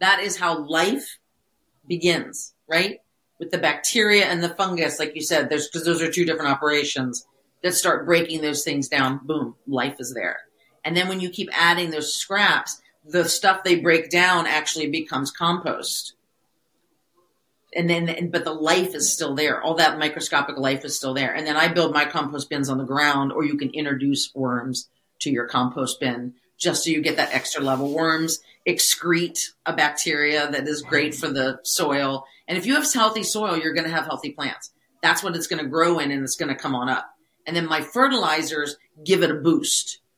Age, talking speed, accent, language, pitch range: 40-59, 195 wpm, American, English, 150-175 Hz